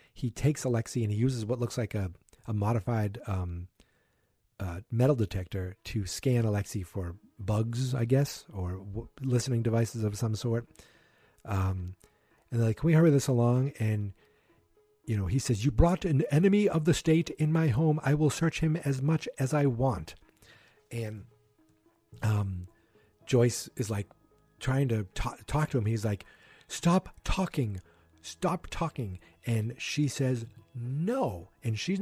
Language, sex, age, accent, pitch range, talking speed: English, male, 40-59, American, 105-135 Hz, 160 wpm